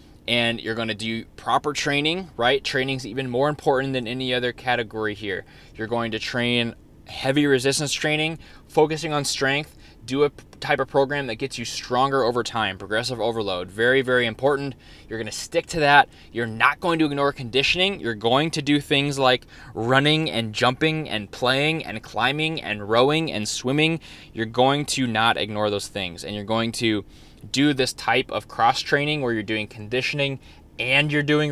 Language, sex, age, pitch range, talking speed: English, male, 20-39, 105-140 Hz, 180 wpm